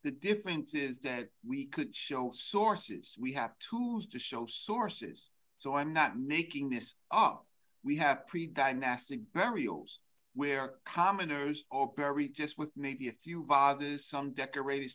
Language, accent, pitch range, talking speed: English, American, 130-165 Hz, 145 wpm